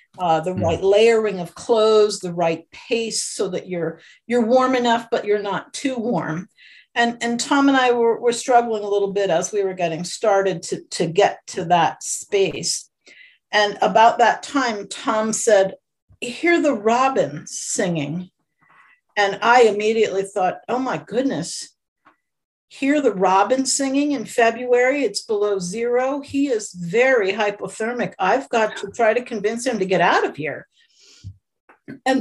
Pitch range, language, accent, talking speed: 190-250 Hz, English, American, 160 wpm